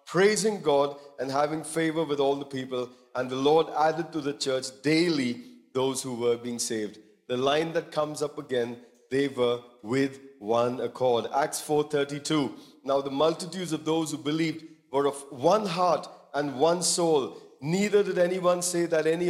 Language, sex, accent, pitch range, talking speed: English, male, Indian, 140-170 Hz, 170 wpm